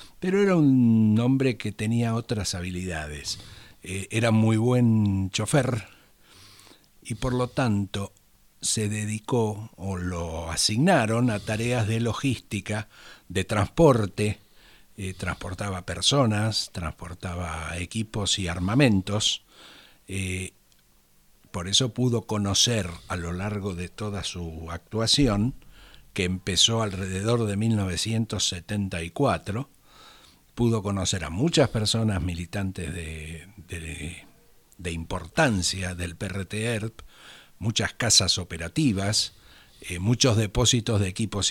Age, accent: 60-79, Argentinian